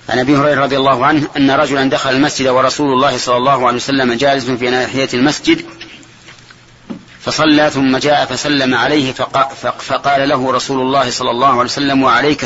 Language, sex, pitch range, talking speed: Arabic, male, 130-150 Hz, 165 wpm